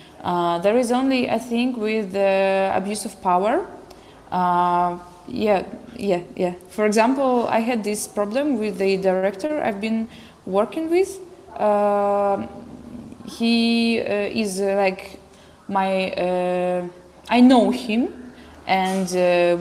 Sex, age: female, 20-39